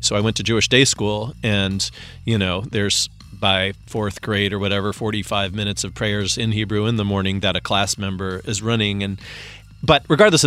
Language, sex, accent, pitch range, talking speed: English, male, American, 100-125 Hz, 195 wpm